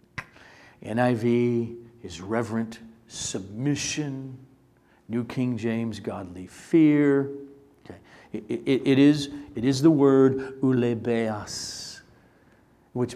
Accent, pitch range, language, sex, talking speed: American, 115-145 Hz, English, male, 85 wpm